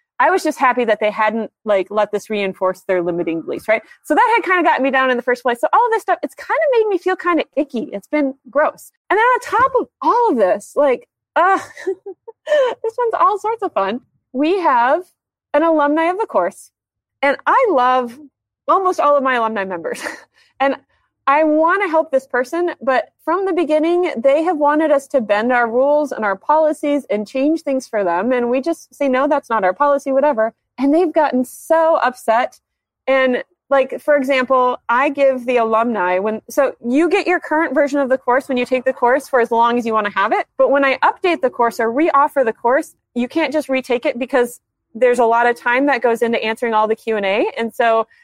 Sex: female